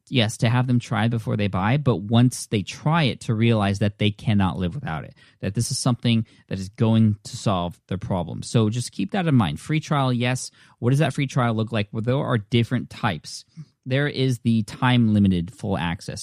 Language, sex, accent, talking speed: English, male, American, 220 wpm